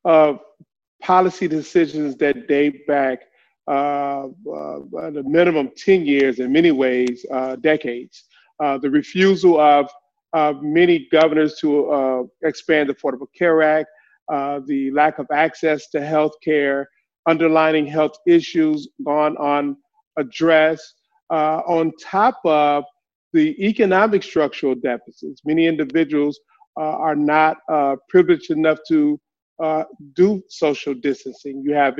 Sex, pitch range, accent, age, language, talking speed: male, 140-160 Hz, American, 40-59, English, 130 wpm